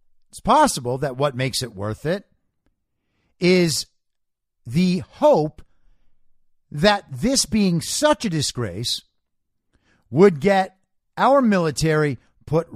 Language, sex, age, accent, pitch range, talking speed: English, male, 50-69, American, 120-180 Hz, 105 wpm